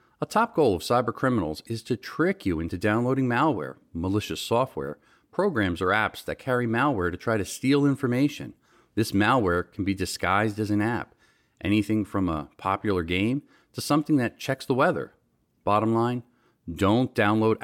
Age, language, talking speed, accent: 40-59, English, 165 wpm, American